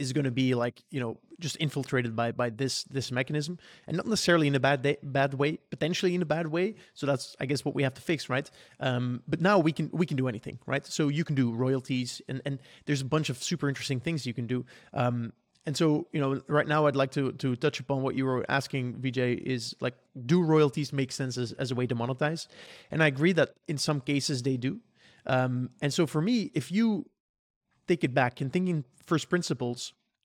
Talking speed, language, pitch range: 235 wpm, English, 130-165 Hz